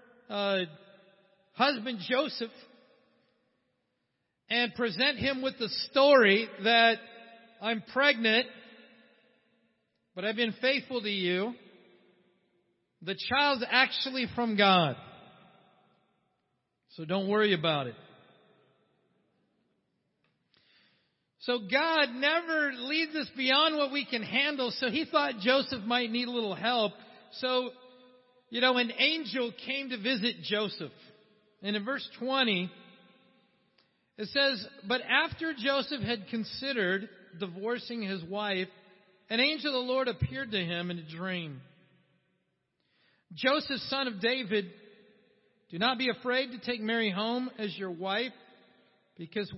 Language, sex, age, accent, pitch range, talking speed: English, male, 50-69, American, 195-255 Hz, 115 wpm